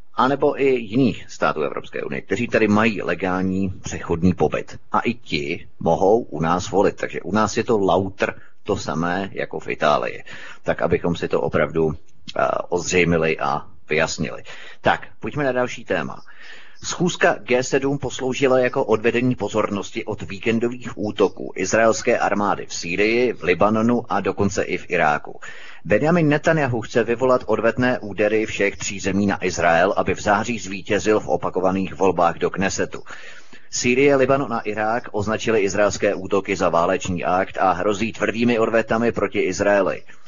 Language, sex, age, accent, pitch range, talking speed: Czech, male, 30-49, native, 100-130 Hz, 150 wpm